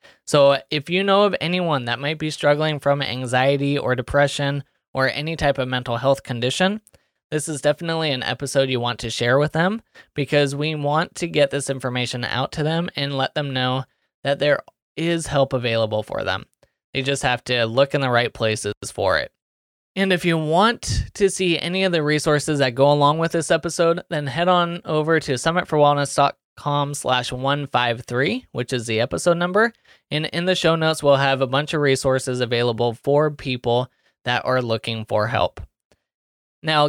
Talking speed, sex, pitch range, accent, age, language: 185 wpm, male, 130-165 Hz, American, 20-39, English